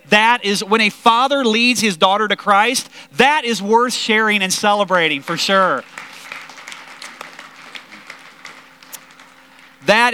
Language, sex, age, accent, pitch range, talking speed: English, male, 30-49, American, 150-245 Hz, 110 wpm